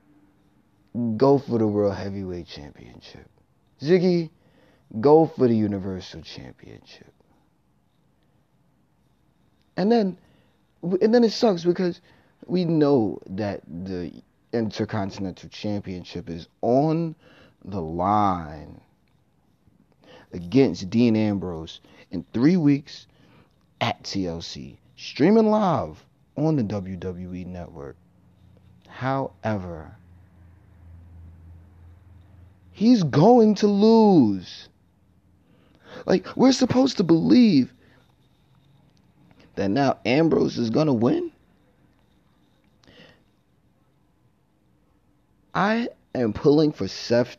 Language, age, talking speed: English, 30-49, 80 wpm